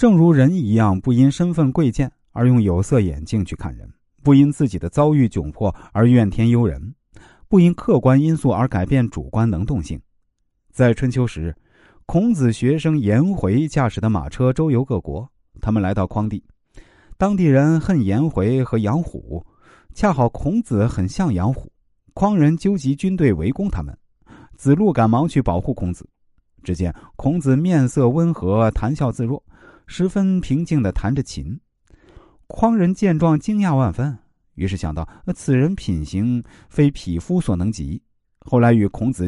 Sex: male